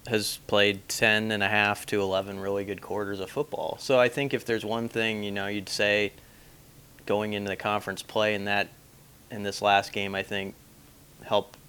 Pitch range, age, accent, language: 105-125 Hz, 30-49, American, English